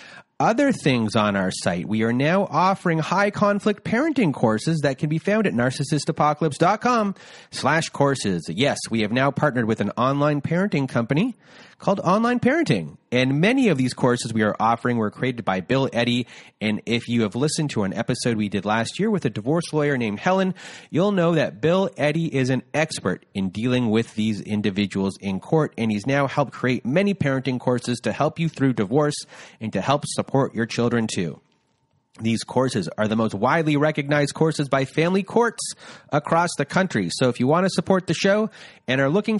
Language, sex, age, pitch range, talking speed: English, male, 30-49, 120-190 Hz, 190 wpm